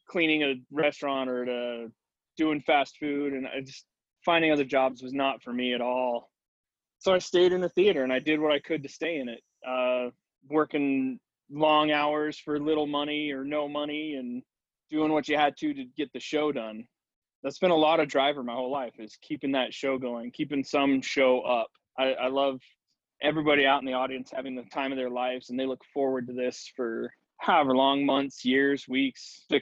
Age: 20-39